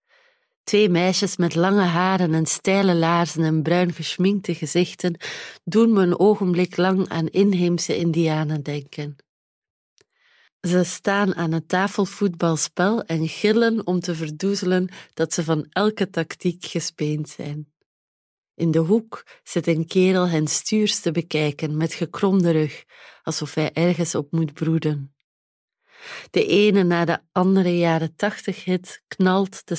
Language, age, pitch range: Dutch, 30-49, 155-190 Hz